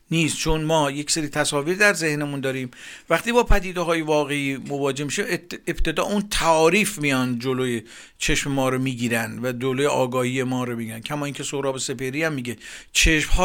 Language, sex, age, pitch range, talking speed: Persian, male, 50-69, 140-175 Hz, 170 wpm